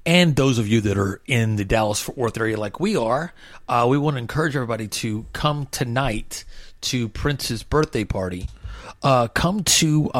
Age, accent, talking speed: 30-49, American, 185 wpm